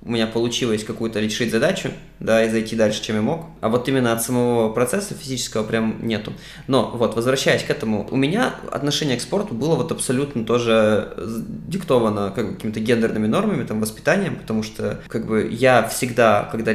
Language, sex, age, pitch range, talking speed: Russian, male, 20-39, 115-145 Hz, 175 wpm